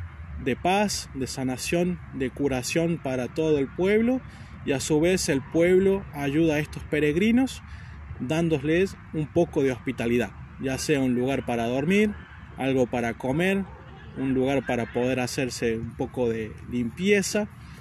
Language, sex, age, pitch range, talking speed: Spanish, male, 20-39, 125-170 Hz, 145 wpm